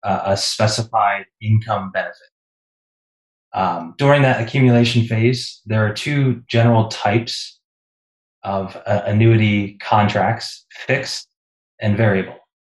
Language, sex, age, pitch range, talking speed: English, male, 20-39, 100-120 Hz, 100 wpm